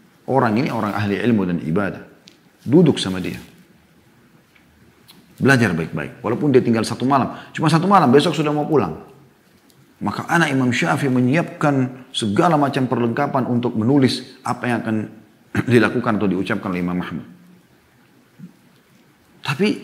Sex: male